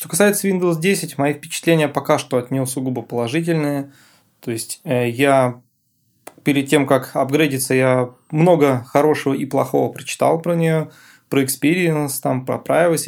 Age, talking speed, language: 20-39, 145 wpm, Russian